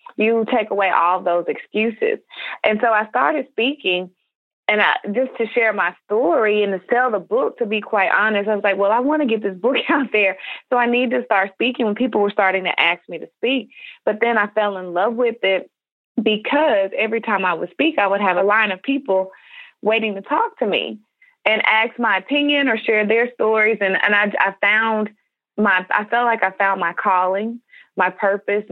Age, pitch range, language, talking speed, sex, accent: 20-39, 190-235 Hz, English, 215 wpm, female, American